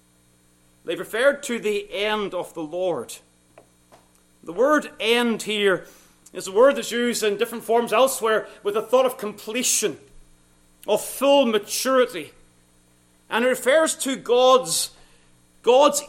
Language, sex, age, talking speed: English, male, 40-59, 130 wpm